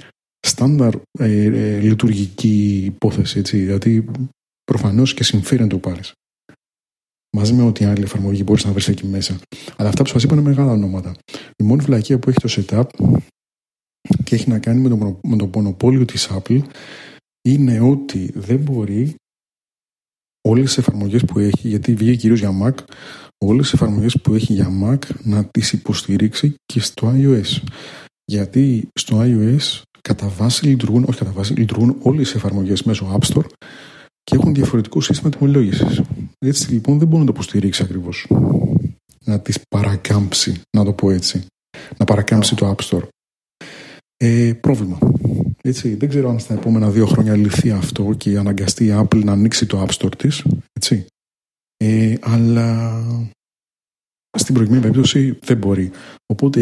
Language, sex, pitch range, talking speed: Greek, male, 105-130 Hz, 145 wpm